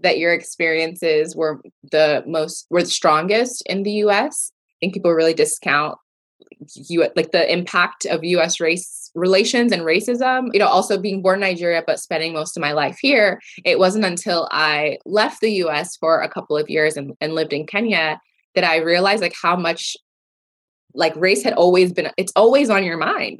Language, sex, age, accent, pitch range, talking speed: English, female, 20-39, American, 155-210 Hz, 185 wpm